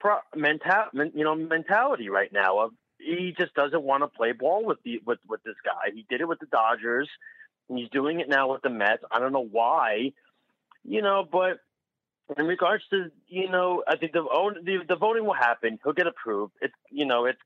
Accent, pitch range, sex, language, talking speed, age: American, 120-180 Hz, male, English, 210 wpm, 30-49